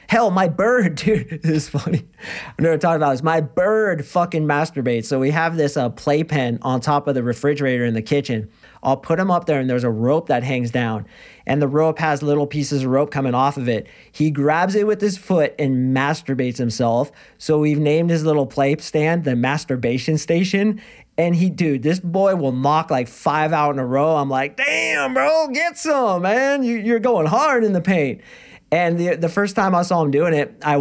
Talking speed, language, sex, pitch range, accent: 215 wpm, English, male, 140-175 Hz, American